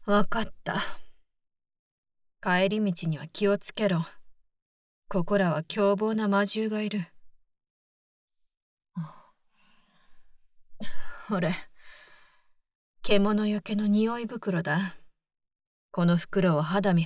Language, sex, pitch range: Japanese, female, 180-215 Hz